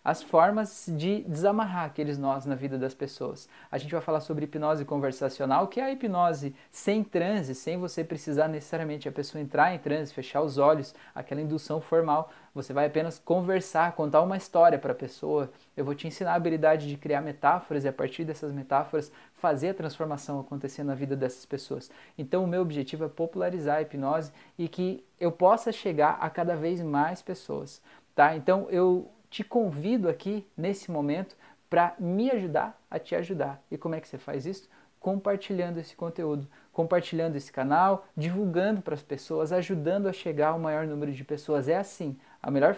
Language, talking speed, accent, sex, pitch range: Portuguese, 185 wpm, Brazilian, male, 145-180 Hz